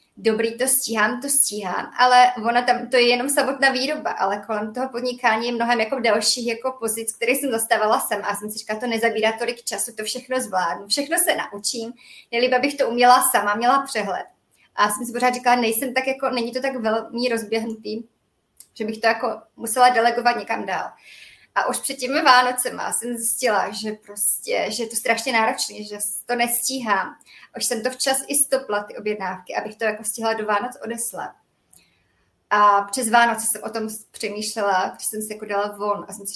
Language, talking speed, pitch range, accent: Czech, 195 wpm, 215-250 Hz, native